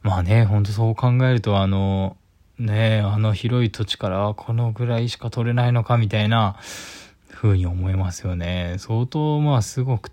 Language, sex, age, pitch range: Japanese, male, 20-39, 95-125 Hz